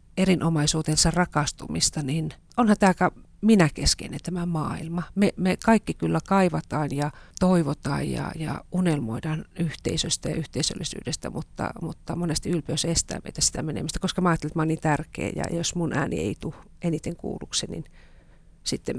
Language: Finnish